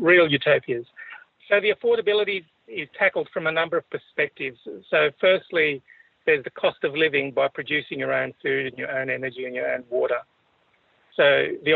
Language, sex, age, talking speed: English, male, 50-69, 175 wpm